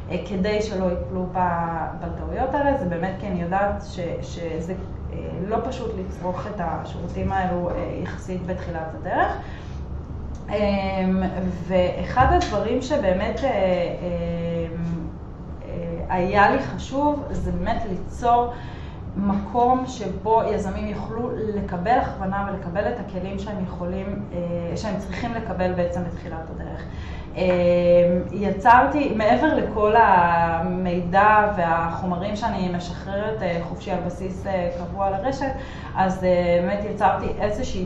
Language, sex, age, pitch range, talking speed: Hebrew, female, 20-39, 170-200 Hz, 100 wpm